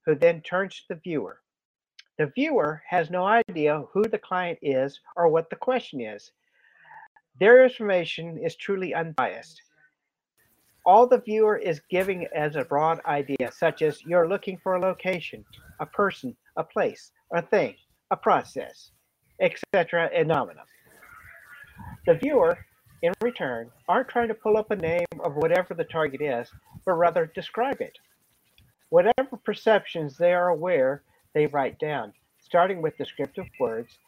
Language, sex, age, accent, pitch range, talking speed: English, male, 50-69, American, 155-210 Hz, 145 wpm